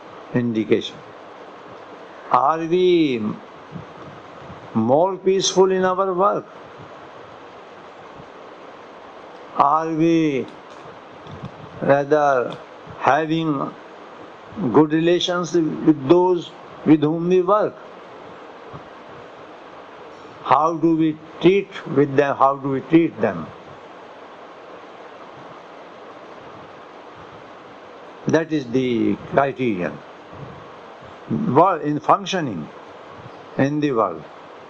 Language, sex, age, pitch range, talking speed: English, male, 60-79, 135-170 Hz, 70 wpm